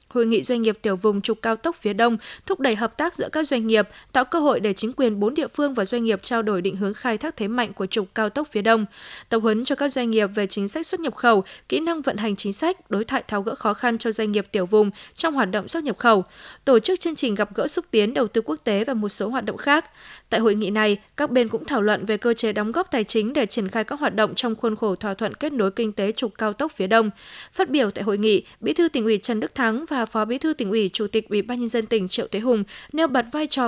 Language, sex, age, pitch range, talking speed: Vietnamese, female, 20-39, 215-260 Hz, 295 wpm